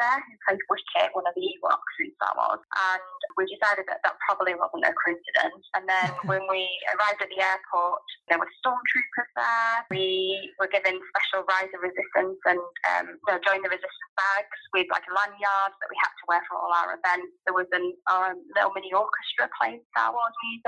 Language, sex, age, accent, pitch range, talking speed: English, female, 20-39, British, 180-220 Hz, 195 wpm